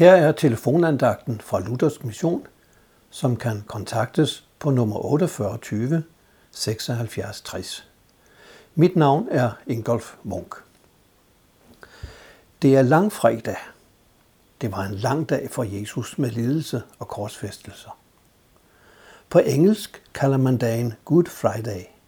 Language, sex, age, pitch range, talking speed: Danish, male, 60-79, 110-150 Hz, 110 wpm